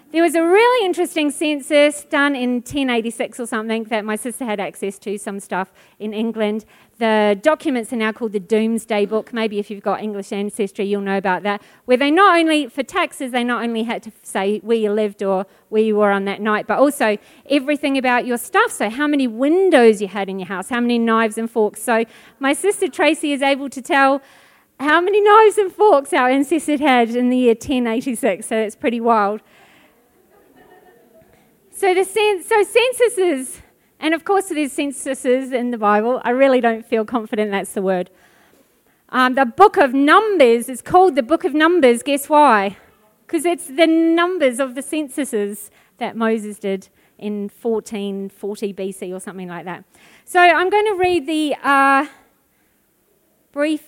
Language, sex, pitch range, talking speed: English, female, 210-290 Hz, 185 wpm